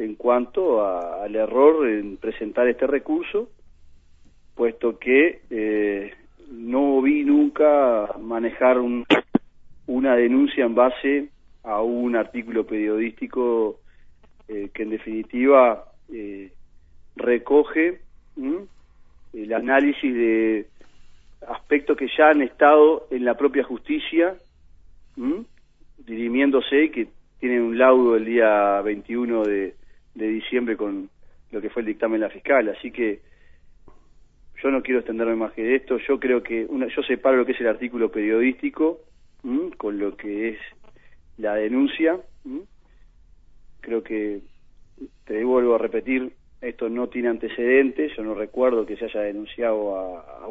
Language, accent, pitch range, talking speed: Spanish, Argentinian, 105-135 Hz, 135 wpm